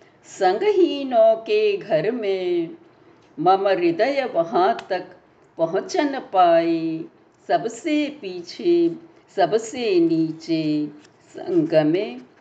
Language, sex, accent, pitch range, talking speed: Hindi, female, native, 245-345 Hz, 75 wpm